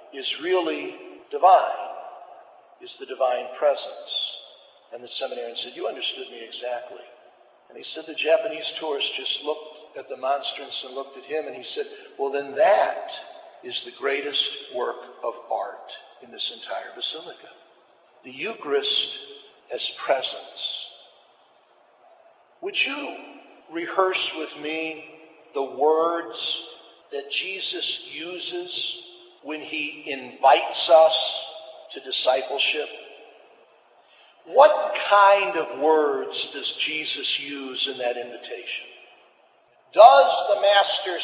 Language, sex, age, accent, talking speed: English, male, 50-69, American, 115 wpm